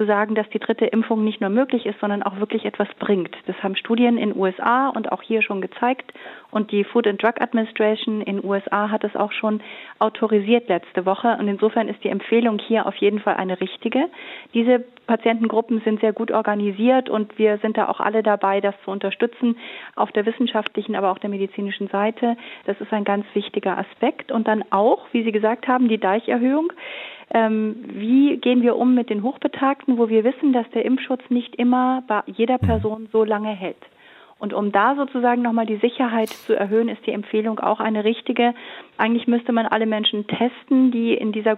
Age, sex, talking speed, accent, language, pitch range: 30-49, female, 195 wpm, German, German, 210-235 Hz